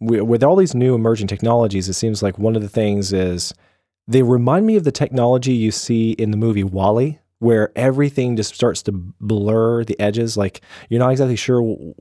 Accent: American